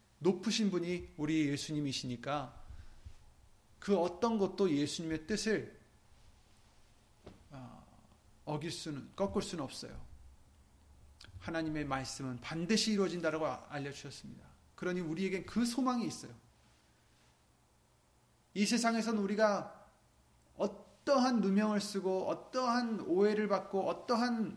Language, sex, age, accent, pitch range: Korean, male, 30-49, native, 135-205 Hz